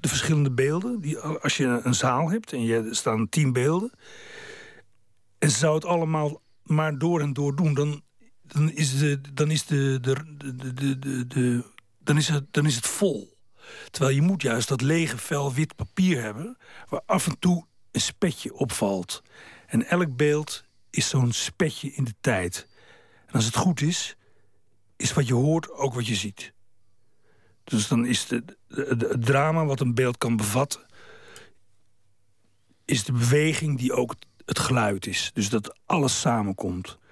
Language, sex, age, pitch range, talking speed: Dutch, male, 60-79, 115-150 Hz, 145 wpm